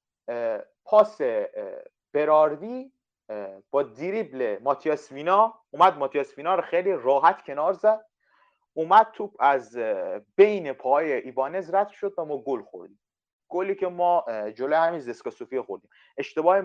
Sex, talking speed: male, 120 wpm